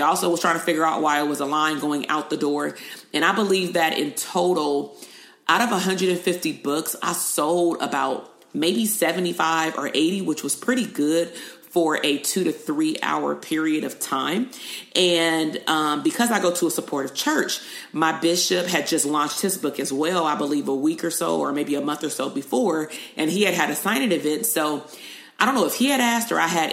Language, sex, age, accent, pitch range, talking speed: English, female, 30-49, American, 150-175 Hz, 215 wpm